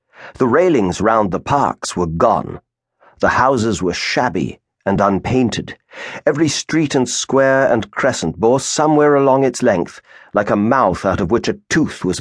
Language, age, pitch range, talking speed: English, 50-69, 100-150 Hz, 160 wpm